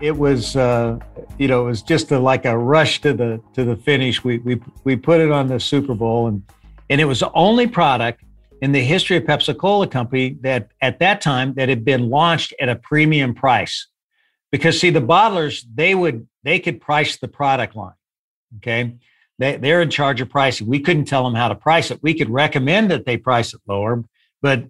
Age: 60-79